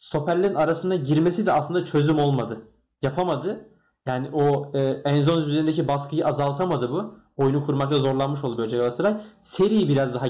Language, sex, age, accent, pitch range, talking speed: Turkish, male, 20-39, native, 130-150 Hz, 145 wpm